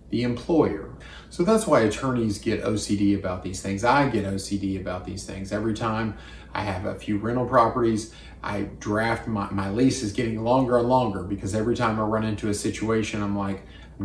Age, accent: 40-59, American